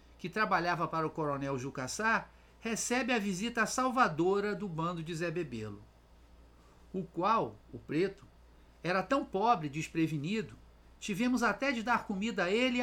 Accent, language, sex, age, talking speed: Brazilian, Portuguese, male, 50-69, 150 wpm